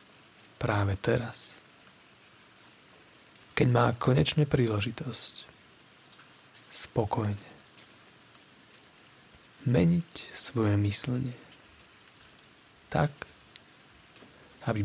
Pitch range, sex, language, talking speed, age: 105-130 Hz, male, Slovak, 50 wpm, 30-49